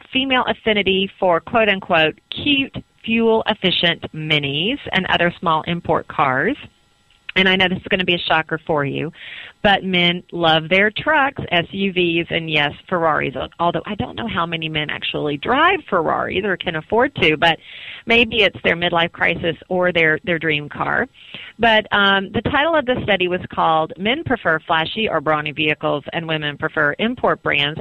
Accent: American